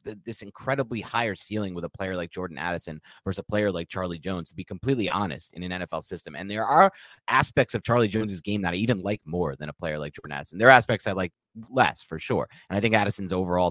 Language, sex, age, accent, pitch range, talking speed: English, male, 30-49, American, 90-115 Hz, 245 wpm